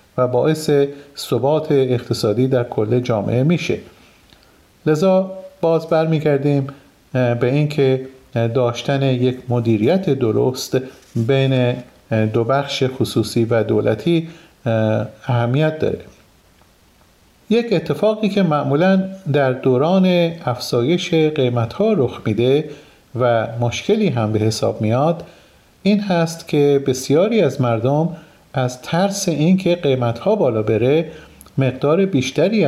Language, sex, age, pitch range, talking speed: Persian, male, 40-59, 120-160 Hz, 105 wpm